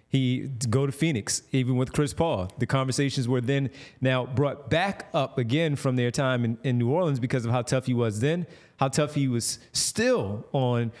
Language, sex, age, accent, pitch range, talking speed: English, male, 30-49, American, 120-145 Hz, 200 wpm